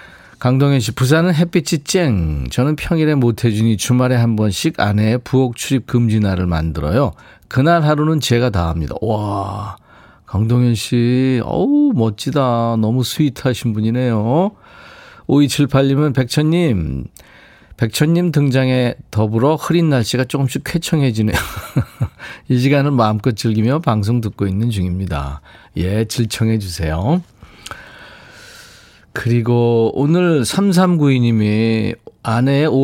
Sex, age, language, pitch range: male, 40-59, Korean, 105-140 Hz